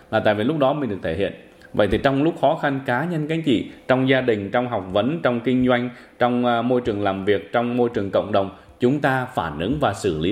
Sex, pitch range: male, 95-125 Hz